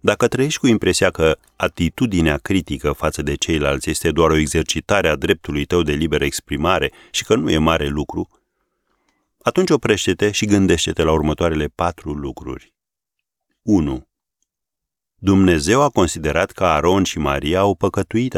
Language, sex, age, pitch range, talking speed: Romanian, male, 40-59, 75-95 Hz, 145 wpm